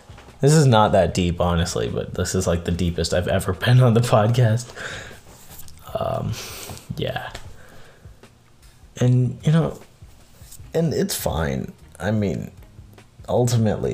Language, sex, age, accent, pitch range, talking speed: English, male, 20-39, American, 95-120 Hz, 125 wpm